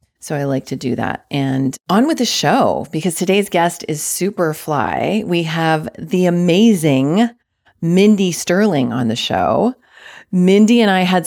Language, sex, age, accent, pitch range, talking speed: English, female, 30-49, American, 150-220 Hz, 160 wpm